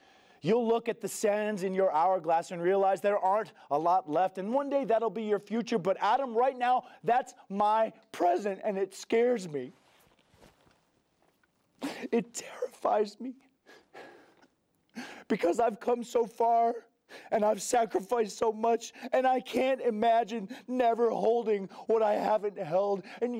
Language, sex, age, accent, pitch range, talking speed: English, male, 40-59, American, 195-235 Hz, 145 wpm